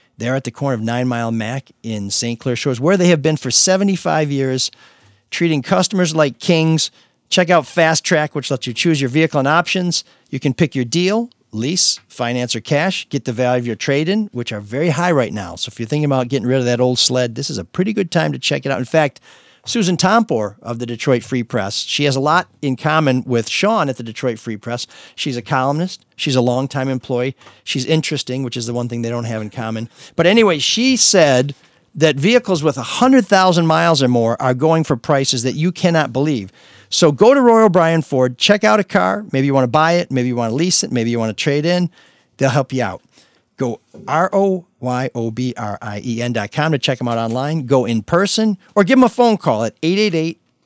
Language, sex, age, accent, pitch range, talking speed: English, male, 50-69, American, 120-165 Hz, 230 wpm